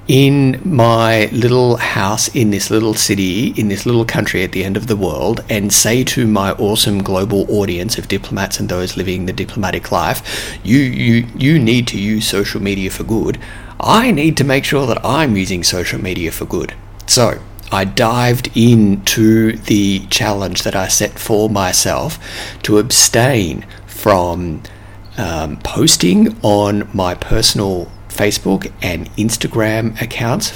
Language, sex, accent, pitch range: English, male, Australian, 95-115 Hz